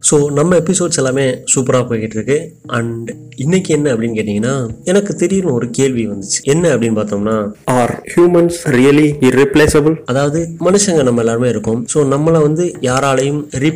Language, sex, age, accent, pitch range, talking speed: Tamil, male, 30-49, native, 115-155 Hz, 45 wpm